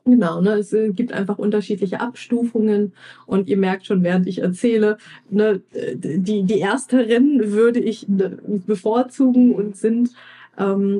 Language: German